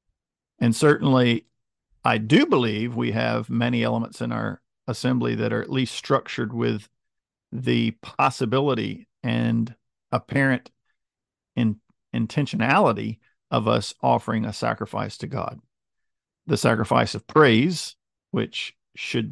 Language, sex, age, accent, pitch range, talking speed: English, male, 50-69, American, 105-120 Hz, 115 wpm